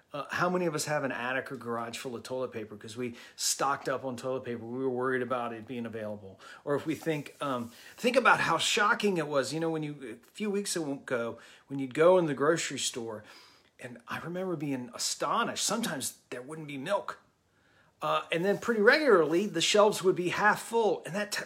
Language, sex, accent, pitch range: English, male, American, 125-175 Hz